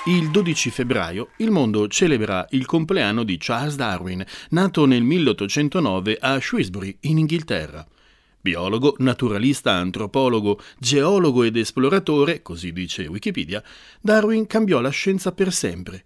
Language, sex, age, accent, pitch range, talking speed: Italian, male, 30-49, native, 110-165 Hz, 125 wpm